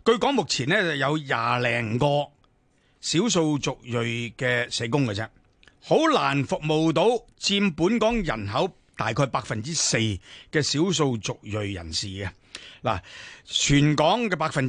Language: Chinese